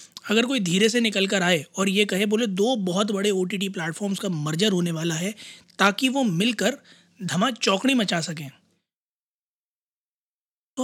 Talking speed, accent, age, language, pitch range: 155 wpm, native, 20-39, Hindi, 170-215 Hz